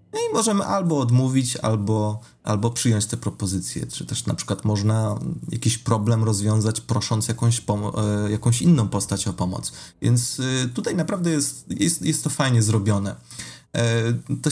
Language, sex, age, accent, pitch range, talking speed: Polish, male, 30-49, native, 110-135 Hz, 135 wpm